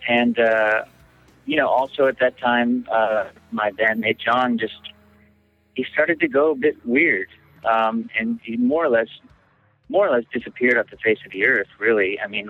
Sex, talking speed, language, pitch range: male, 185 wpm, English, 105-125 Hz